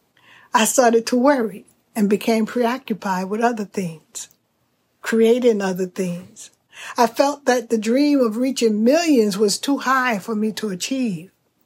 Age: 50-69